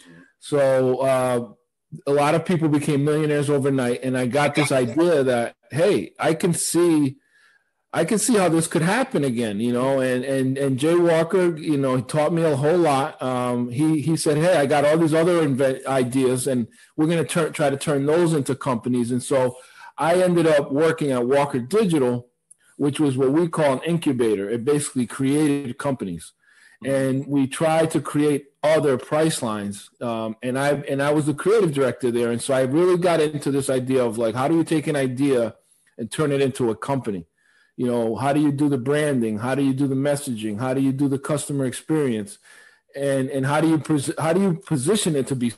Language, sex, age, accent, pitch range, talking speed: English, male, 40-59, American, 130-160 Hz, 205 wpm